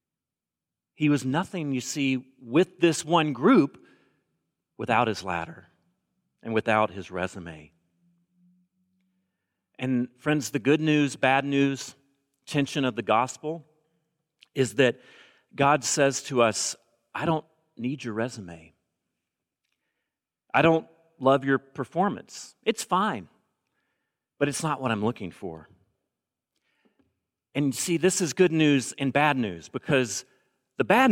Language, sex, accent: English, male, American